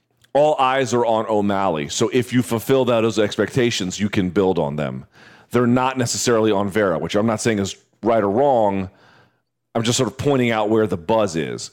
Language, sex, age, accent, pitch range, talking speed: English, male, 40-59, American, 105-130 Hz, 205 wpm